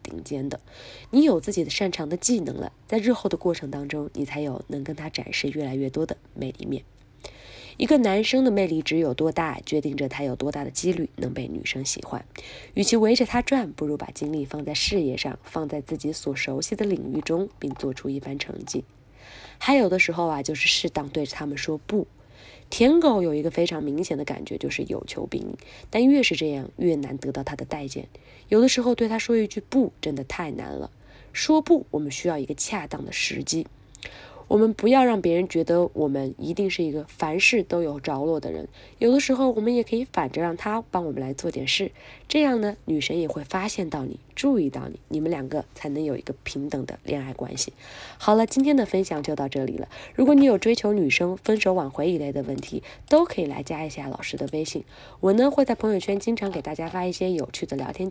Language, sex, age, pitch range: Chinese, female, 20-39, 145-210 Hz